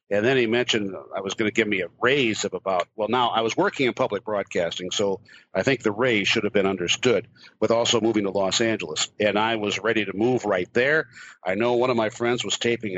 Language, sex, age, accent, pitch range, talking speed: English, male, 60-79, American, 105-125 Hz, 245 wpm